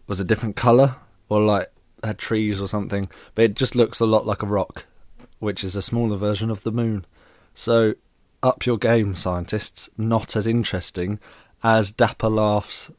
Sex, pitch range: male, 95-115 Hz